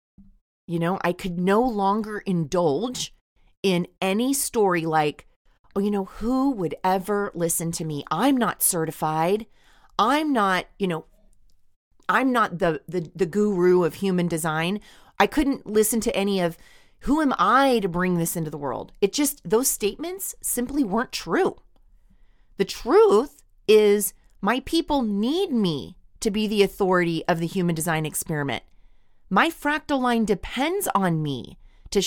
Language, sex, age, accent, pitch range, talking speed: English, female, 30-49, American, 170-245 Hz, 150 wpm